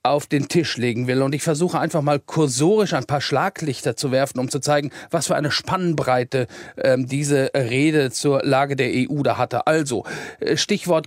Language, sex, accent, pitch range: German, male, German, 140-170 Hz